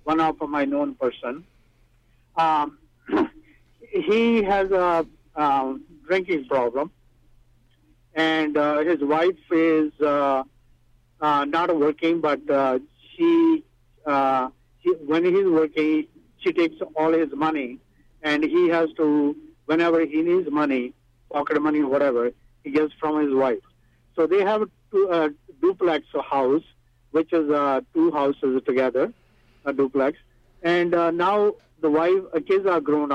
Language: English